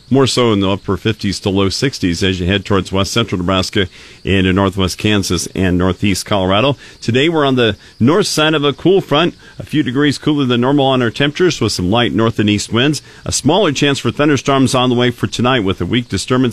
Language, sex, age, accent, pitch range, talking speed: English, male, 50-69, American, 100-130 Hz, 225 wpm